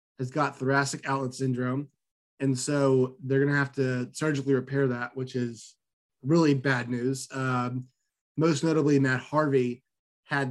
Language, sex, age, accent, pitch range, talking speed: English, male, 20-39, American, 130-150 Hz, 150 wpm